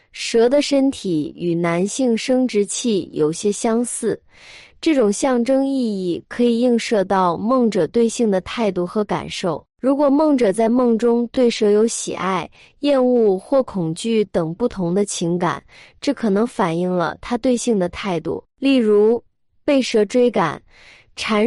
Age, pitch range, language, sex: 20-39, 190-250 Hz, Chinese, female